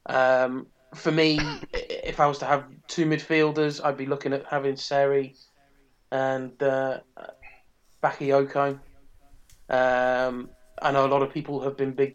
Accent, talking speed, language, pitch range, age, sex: British, 145 wpm, English, 135-150 Hz, 20-39, male